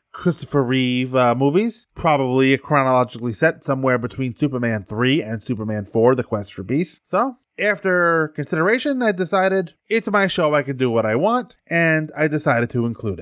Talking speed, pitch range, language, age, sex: 170 wpm, 115-150 Hz, English, 20-39, male